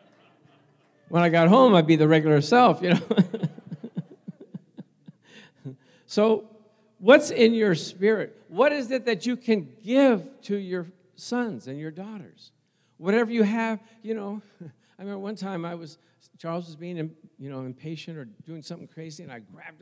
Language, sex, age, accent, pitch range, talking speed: English, male, 50-69, American, 140-205 Hz, 160 wpm